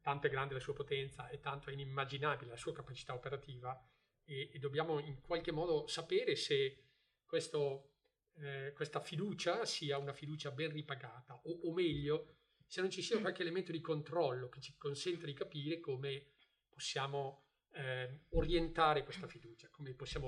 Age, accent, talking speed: 40-59, native, 160 wpm